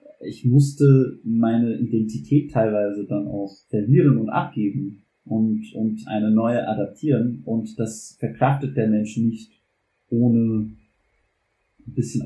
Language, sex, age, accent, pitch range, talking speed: German, male, 30-49, German, 110-135 Hz, 115 wpm